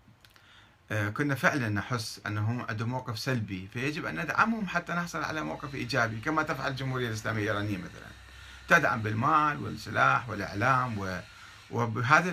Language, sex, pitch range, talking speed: Arabic, male, 115-160 Hz, 125 wpm